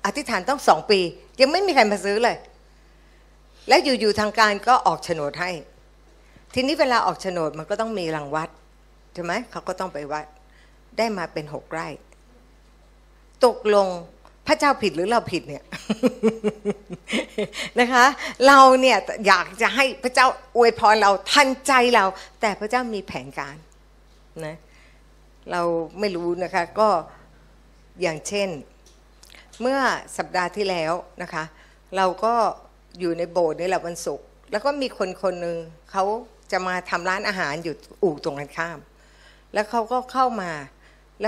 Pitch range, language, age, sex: 170-230 Hz, Thai, 60-79, female